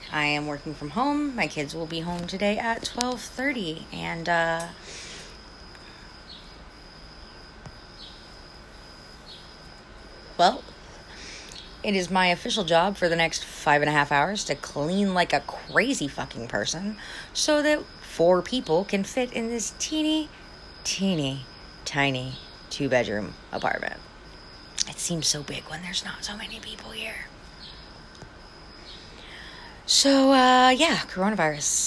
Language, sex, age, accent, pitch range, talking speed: English, female, 30-49, American, 150-205 Hz, 120 wpm